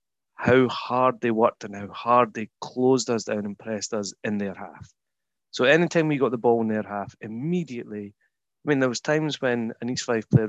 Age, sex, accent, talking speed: 30-49, male, British, 215 wpm